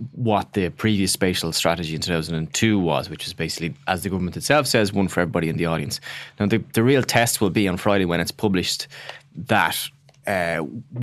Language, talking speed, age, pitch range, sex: English, 195 wpm, 20-39, 90-115 Hz, male